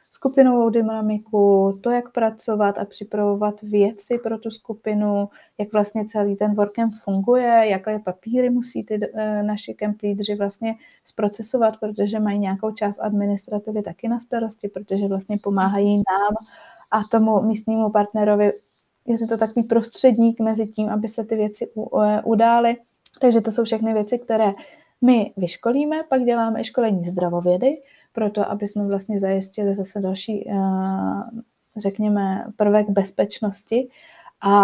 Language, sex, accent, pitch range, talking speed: Czech, female, native, 205-230 Hz, 135 wpm